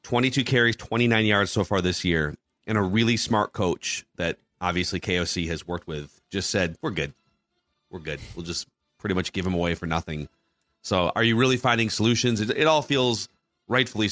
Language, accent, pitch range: English, American, 100-130 Hz